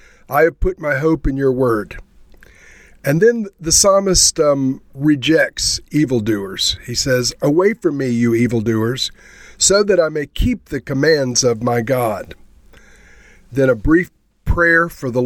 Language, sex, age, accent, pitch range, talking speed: English, male, 50-69, American, 120-150 Hz, 150 wpm